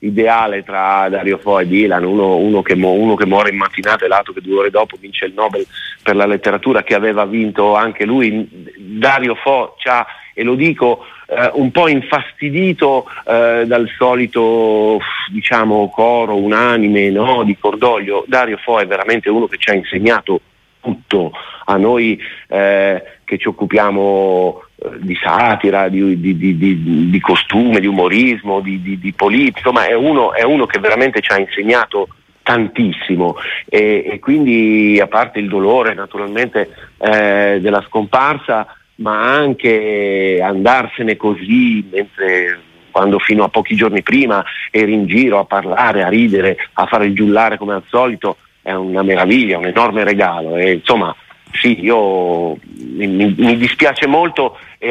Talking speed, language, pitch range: 150 wpm, Italian, 100-120 Hz